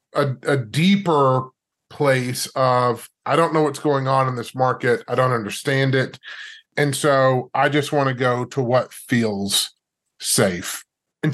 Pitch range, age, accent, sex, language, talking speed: 130-170 Hz, 30-49, American, male, English, 160 wpm